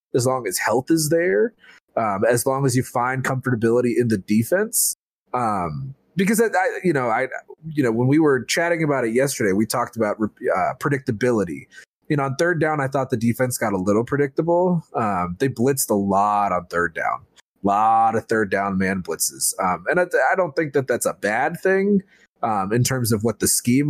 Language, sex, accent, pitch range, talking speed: English, male, American, 115-155 Hz, 210 wpm